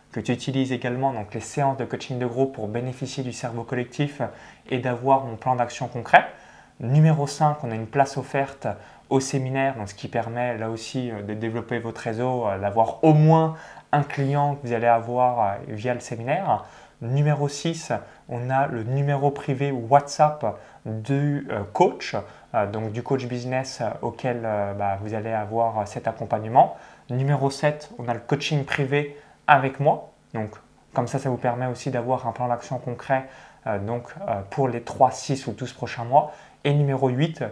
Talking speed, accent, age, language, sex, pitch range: 175 wpm, French, 20-39, French, male, 115-140 Hz